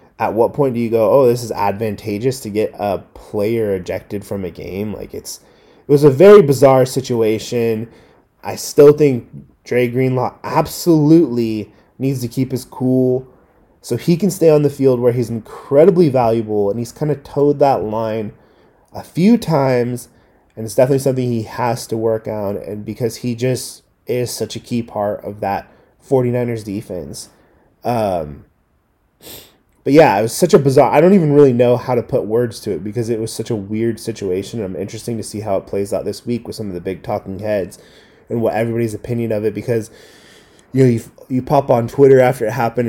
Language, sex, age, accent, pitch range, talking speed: English, male, 20-39, American, 110-130 Hz, 195 wpm